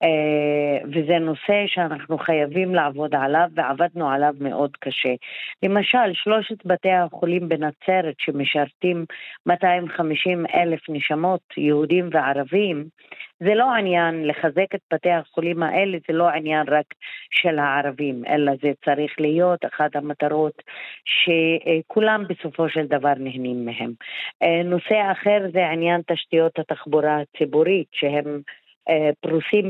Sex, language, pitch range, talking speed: female, Hebrew, 150-175 Hz, 115 wpm